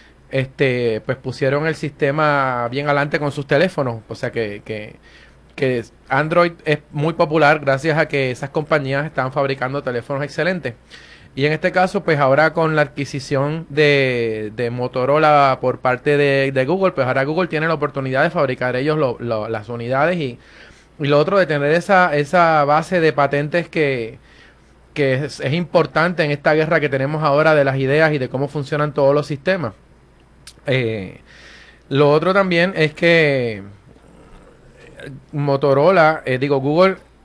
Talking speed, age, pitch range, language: 160 wpm, 20-39, 130-155 Hz, Spanish